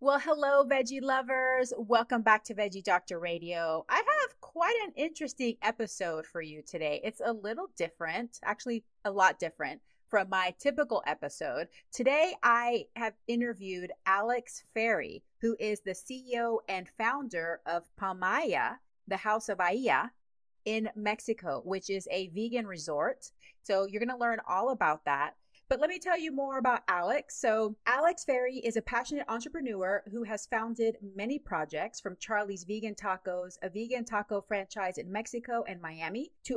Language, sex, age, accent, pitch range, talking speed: English, female, 30-49, American, 190-245 Hz, 160 wpm